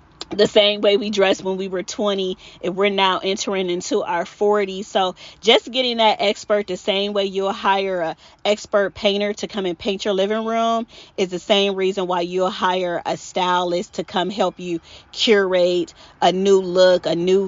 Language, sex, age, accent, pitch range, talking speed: English, female, 30-49, American, 170-200 Hz, 190 wpm